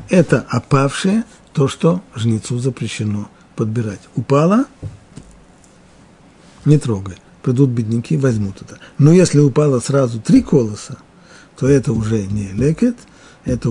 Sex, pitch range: male, 110-150 Hz